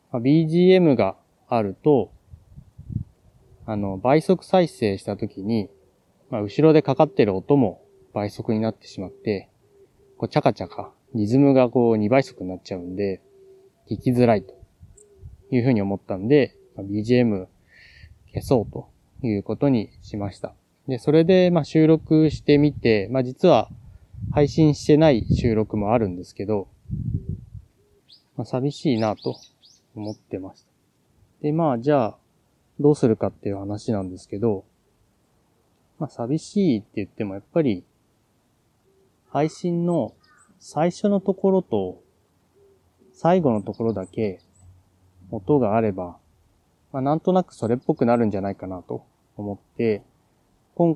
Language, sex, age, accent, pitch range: Japanese, male, 20-39, native, 100-145 Hz